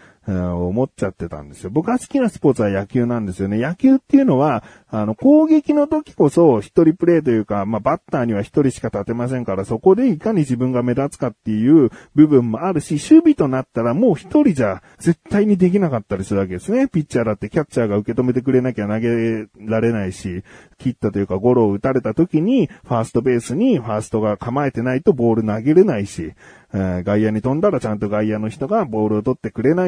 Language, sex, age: Japanese, male, 40-59